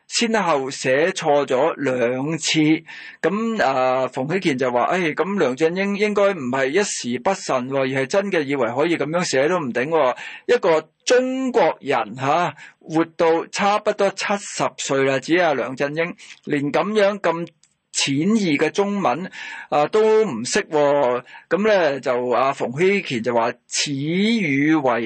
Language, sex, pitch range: Chinese, male, 140-200 Hz